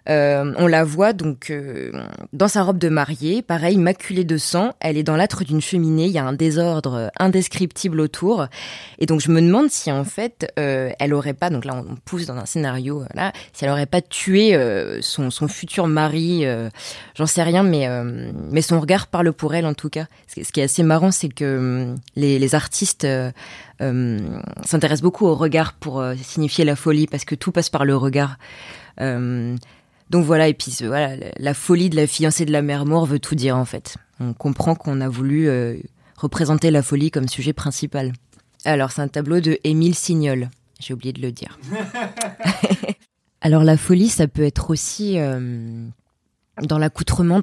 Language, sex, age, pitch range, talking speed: French, female, 20-39, 135-170 Hz, 195 wpm